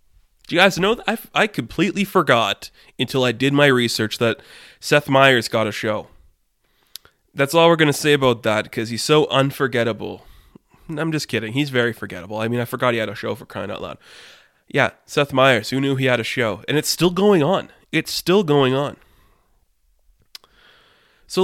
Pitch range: 120-160 Hz